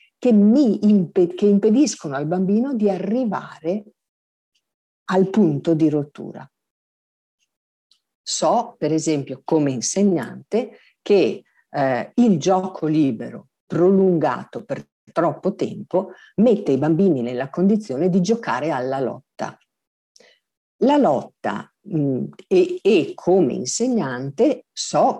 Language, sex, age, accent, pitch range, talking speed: Italian, female, 50-69, native, 155-210 Hz, 100 wpm